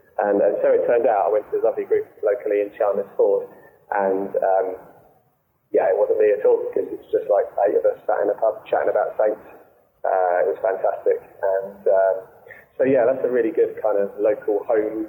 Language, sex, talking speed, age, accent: English, male, 215 wpm, 20-39, British